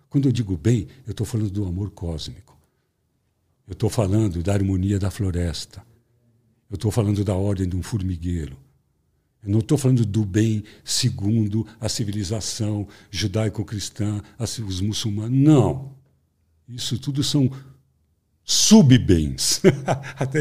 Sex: male